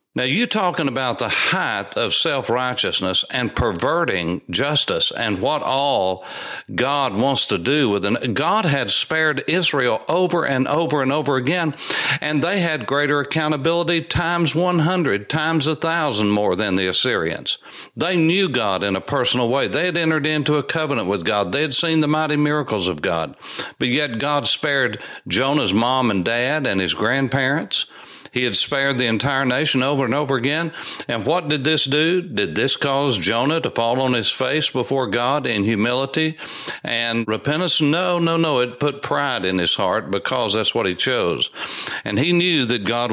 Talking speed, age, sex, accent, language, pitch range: 180 wpm, 60-79, male, American, English, 120-155 Hz